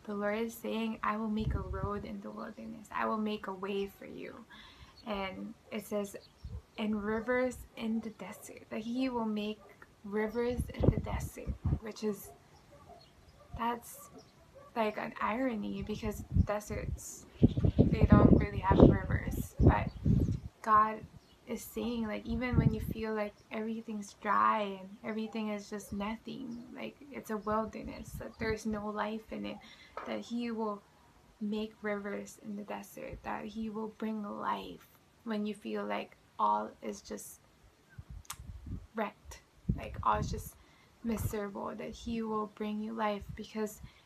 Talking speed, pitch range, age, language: 145 wpm, 205-225 Hz, 20-39, English